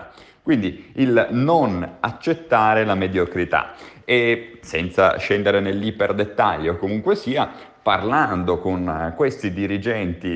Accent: native